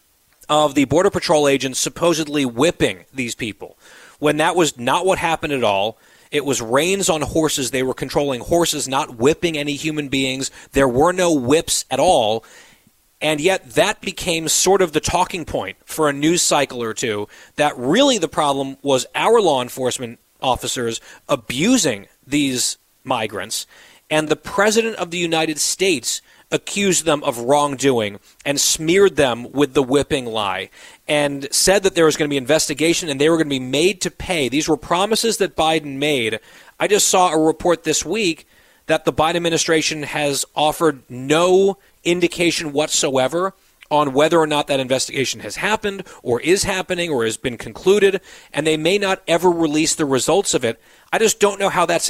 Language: English